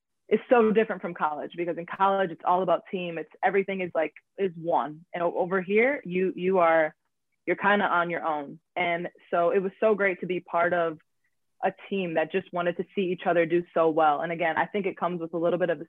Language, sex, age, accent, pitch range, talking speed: English, female, 20-39, American, 160-185 Hz, 240 wpm